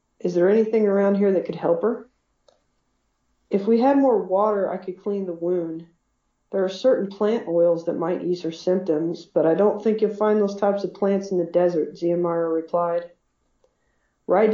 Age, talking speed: 40-59, 185 wpm